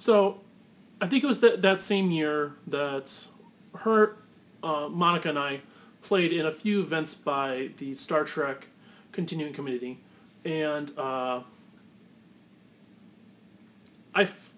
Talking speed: 120 wpm